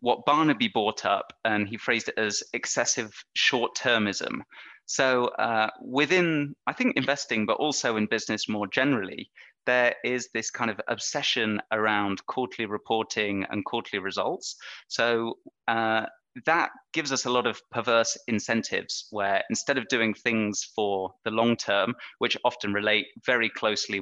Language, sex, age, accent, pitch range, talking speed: English, male, 20-39, British, 105-125 Hz, 145 wpm